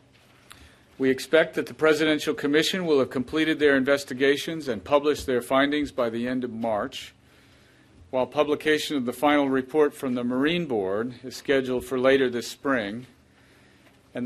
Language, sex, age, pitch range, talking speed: English, male, 50-69, 120-145 Hz, 155 wpm